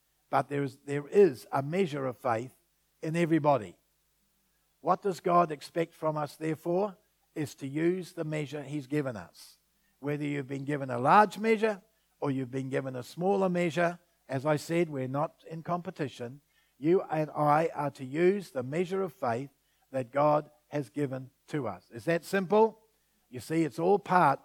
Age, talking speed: 60-79, 170 wpm